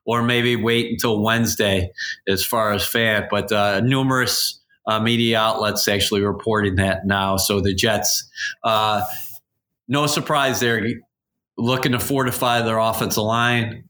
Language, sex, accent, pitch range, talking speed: English, male, American, 105-120 Hz, 140 wpm